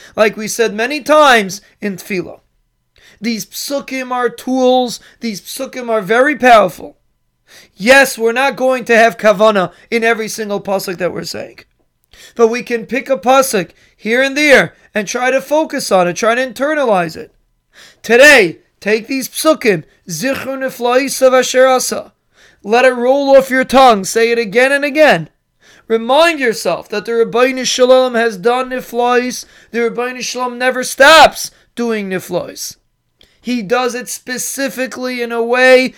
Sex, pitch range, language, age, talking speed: male, 220-255 Hz, English, 30-49, 150 wpm